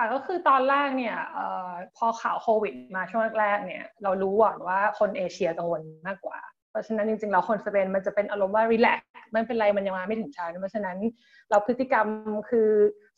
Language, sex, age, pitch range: Thai, female, 20-39, 200-245 Hz